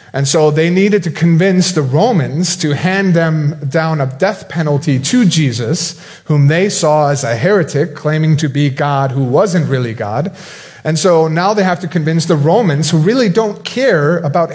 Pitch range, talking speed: 130-170 Hz, 185 wpm